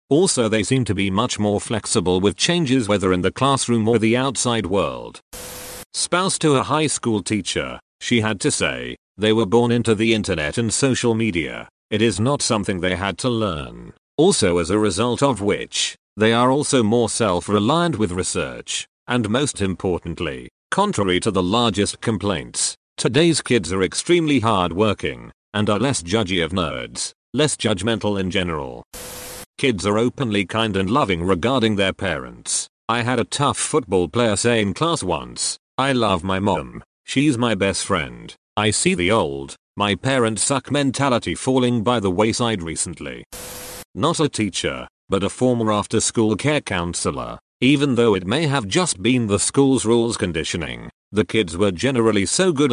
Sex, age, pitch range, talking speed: male, 40-59, 95-125 Hz, 170 wpm